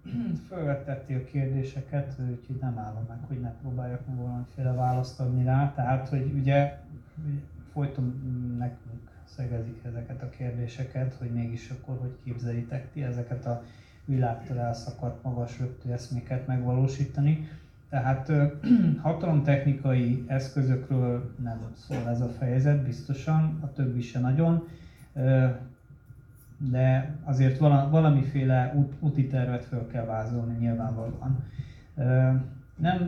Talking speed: 110 wpm